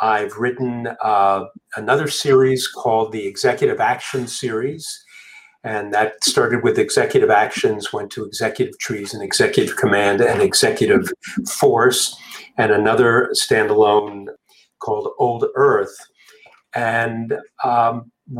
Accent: American